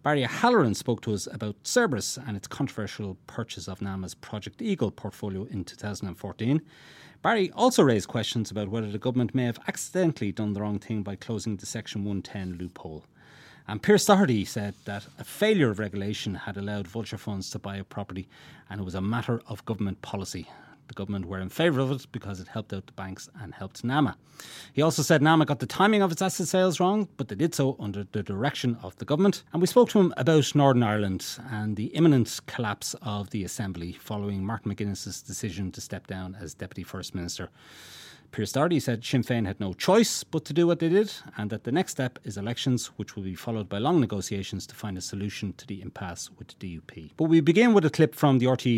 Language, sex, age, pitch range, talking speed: English, male, 30-49, 100-145 Hz, 215 wpm